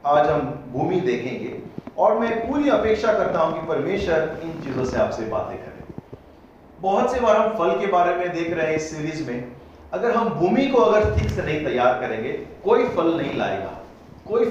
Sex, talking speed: male, 70 wpm